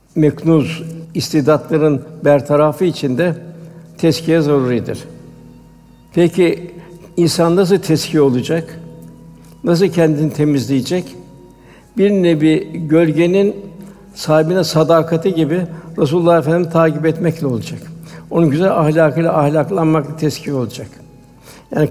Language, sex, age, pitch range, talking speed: Turkish, male, 60-79, 145-165 Hz, 90 wpm